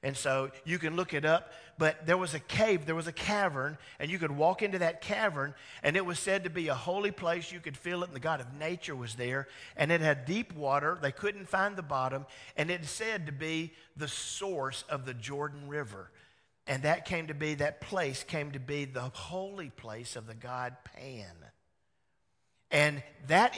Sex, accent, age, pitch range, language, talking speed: male, American, 50-69, 125-165 Hz, English, 210 wpm